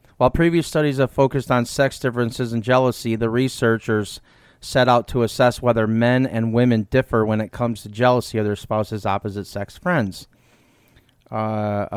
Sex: male